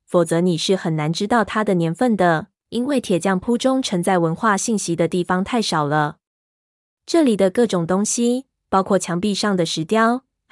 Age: 20-39